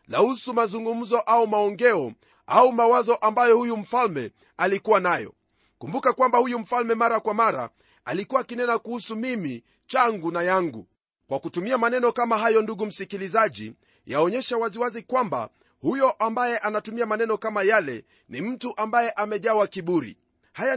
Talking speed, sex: 135 wpm, male